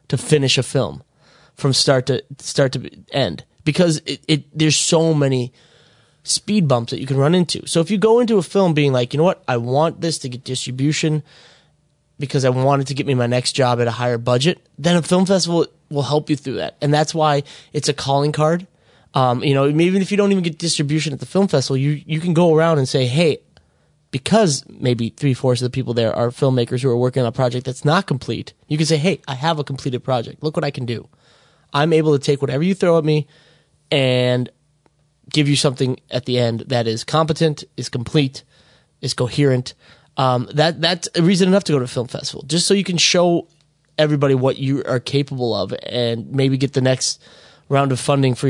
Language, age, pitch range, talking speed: English, 20-39, 130-160 Hz, 220 wpm